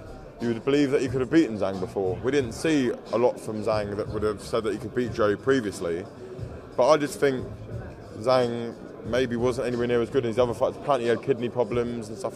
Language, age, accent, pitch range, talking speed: English, 20-39, British, 110-130 Hz, 240 wpm